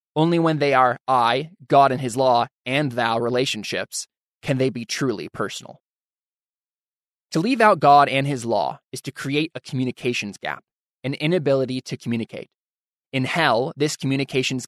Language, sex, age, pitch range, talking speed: English, male, 20-39, 125-150 Hz, 155 wpm